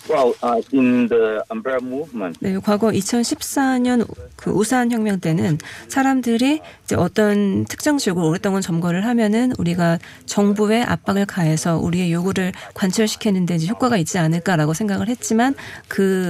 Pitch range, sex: 170-230 Hz, female